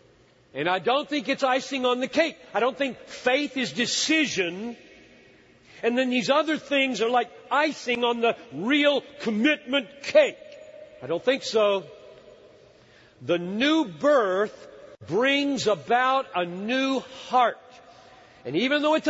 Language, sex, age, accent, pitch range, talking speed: English, male, 50-69, American, 170-265 Hz, 140 wpm